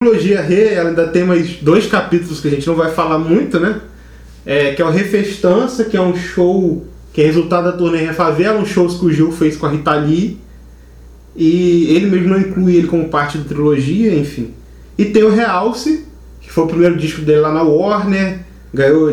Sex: male